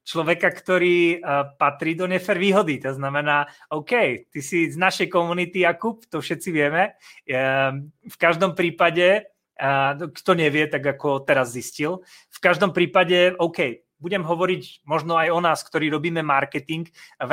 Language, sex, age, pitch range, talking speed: Slovak, male, 30-49, 145-180 Hz, 150 wpm